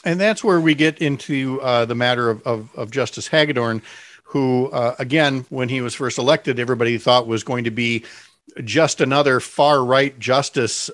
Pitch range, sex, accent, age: 125-165 Hz, male, American, 50-69